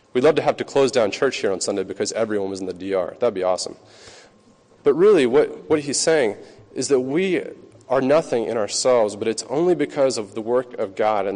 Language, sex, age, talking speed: English, male, 30-49, 225 wpm